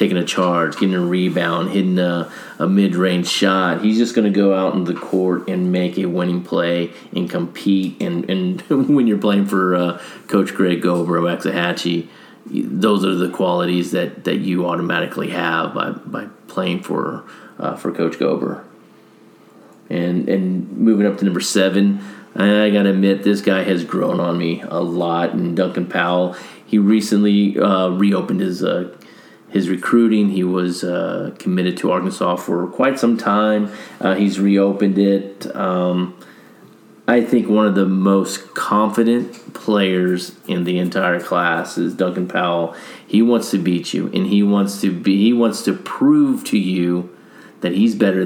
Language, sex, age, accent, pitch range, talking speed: English, male, 30-49, American, 90-105 Hz, 170 wpm